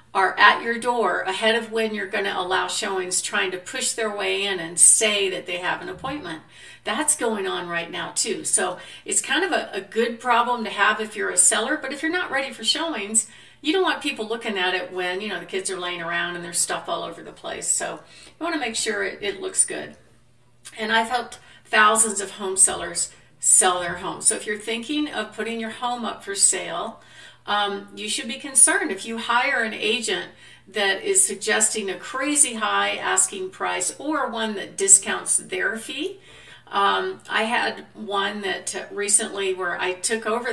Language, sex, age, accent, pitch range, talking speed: English, female, 40-59, American, 195-260 Hz, 205 wpm